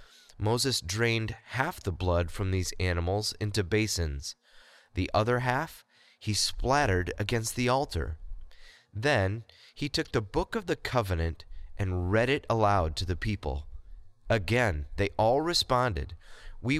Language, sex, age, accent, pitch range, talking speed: English, male, 30-49, American, 90-125 Hz, 135 wpm